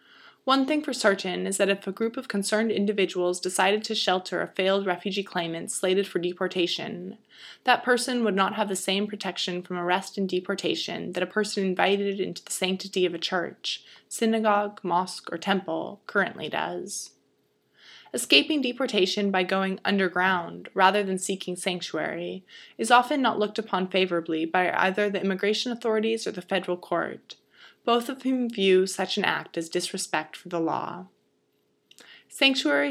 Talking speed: 160 wpm